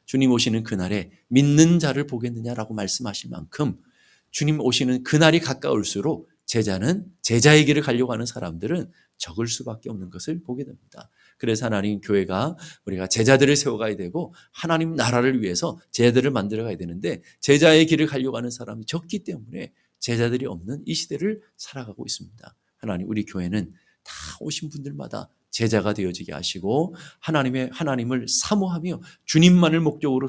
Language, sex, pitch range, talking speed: English, male, 110-155 Hz, 125 wpm